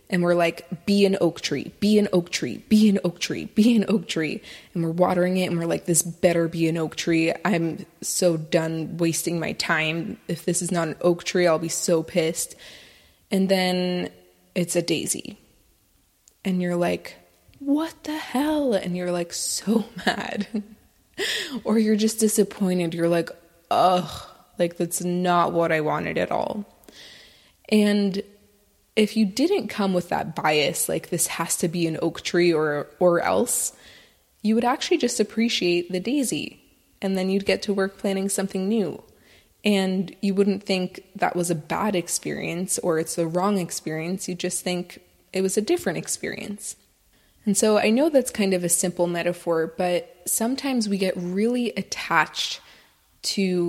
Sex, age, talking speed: female, 20-39, 170 wpm